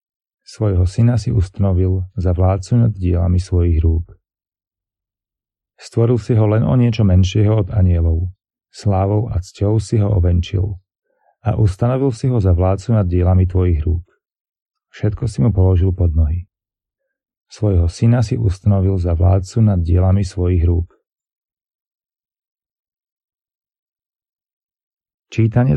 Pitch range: 90-105 Hz